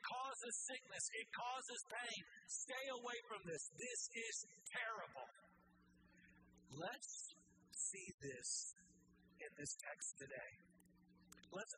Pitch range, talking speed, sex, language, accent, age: 135-220 Hz, 95 wpm, male, English, American, 50-69